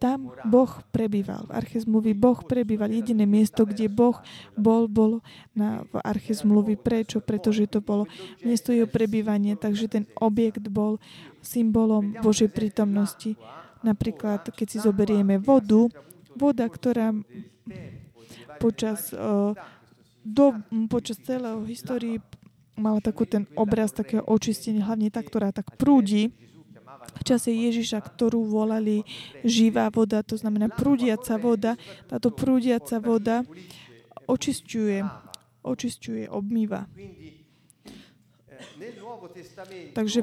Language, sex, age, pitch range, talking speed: Slovak, female, 20-39, 210-235 Hz, 105 wpm